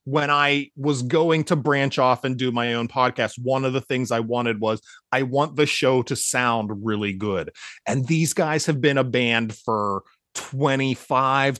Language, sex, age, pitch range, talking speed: English, male, 30-49, 120-145 Hz, 185 wpm